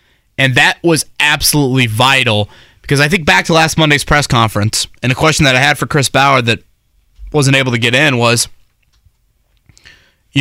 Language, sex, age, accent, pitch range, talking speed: English, male, 20-39, American, 115-155 Hz, 180 wpm